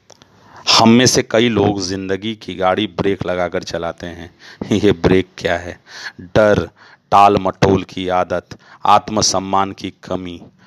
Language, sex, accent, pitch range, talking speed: Hindi, male, native, 95-110 Hz, 135 wpm